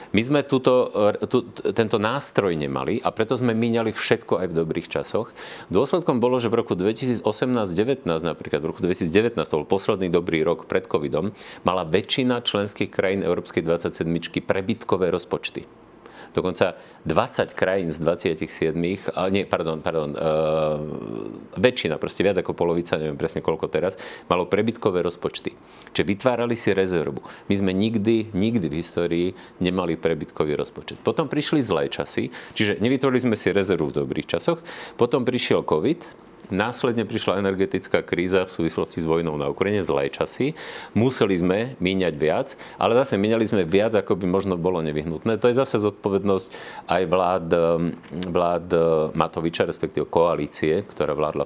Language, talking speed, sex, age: Slovak, 150 wpm, male, 40-59